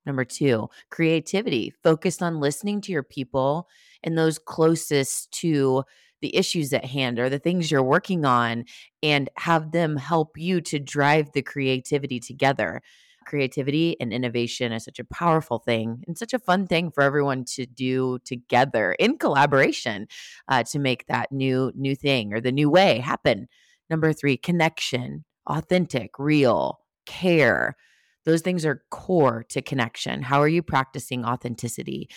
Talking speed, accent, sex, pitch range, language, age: 155 wpm, American, female, 130-160 Hz, English, 30-49